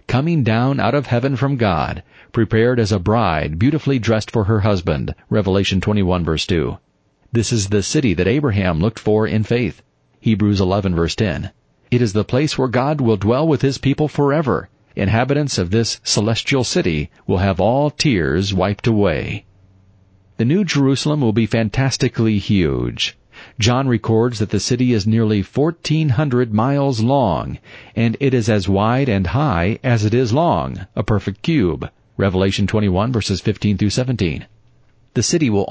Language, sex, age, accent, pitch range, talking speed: English, male, 40-59, American, 100-130 Hz, 160 wpm